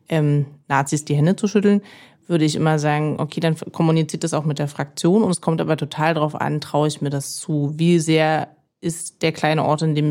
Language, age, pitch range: German, 30-49, 150-165 Hz